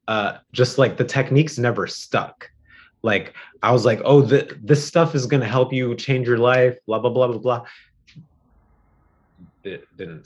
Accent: American